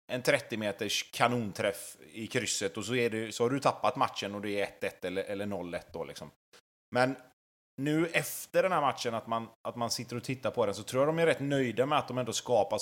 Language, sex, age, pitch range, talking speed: Swedish, male, 30-49, 110-135 Hz, 235 wpm